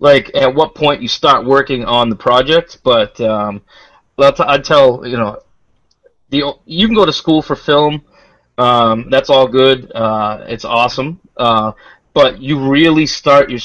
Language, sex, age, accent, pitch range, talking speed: English, male, 30-49, American, 115-135 Hz, 165 wpm